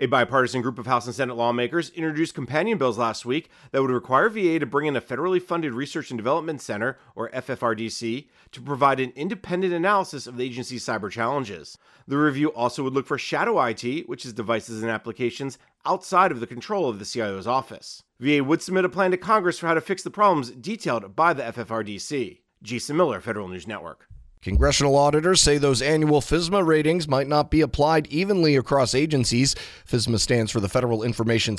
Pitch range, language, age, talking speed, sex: 120-160 Hz, English, 30-49, 195 wpm, male